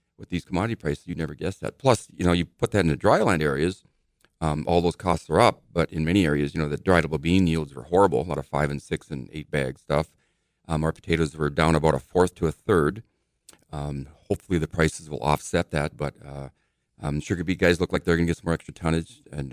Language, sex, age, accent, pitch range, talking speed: English, male, 40-59, American, 75-85 Hz, 255 wpm